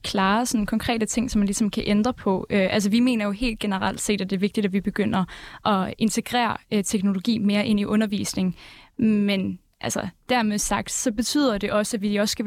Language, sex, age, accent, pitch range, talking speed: Danish, female, 10-29, native, 200-230 Hz, 215 wpm